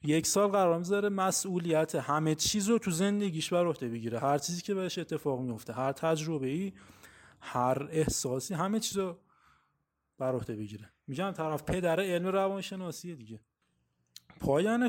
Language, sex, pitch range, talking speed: Persian, male, 140-190 Hz, 145 wpm